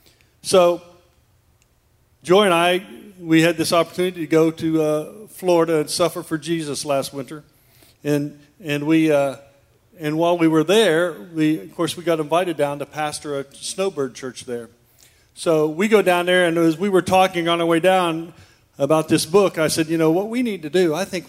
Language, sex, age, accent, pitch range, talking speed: English, male, 50-69, American, 125-180 Hz, 195 wpm